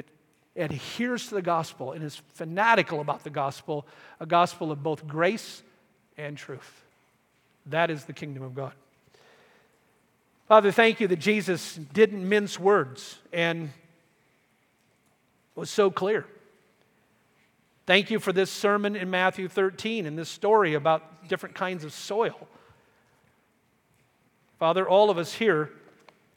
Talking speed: 125 wpm